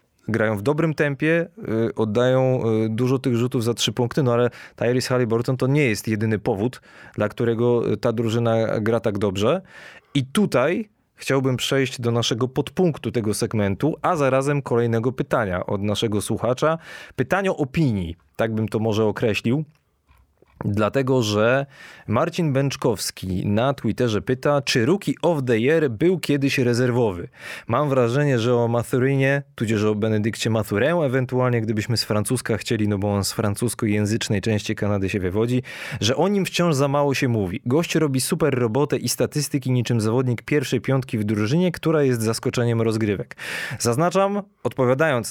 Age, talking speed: 20-39, 150 wpm